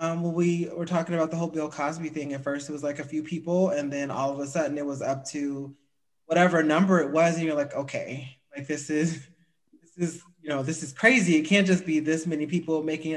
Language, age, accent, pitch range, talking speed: English, 20-39, American, 145-180 Hz, 245 wpm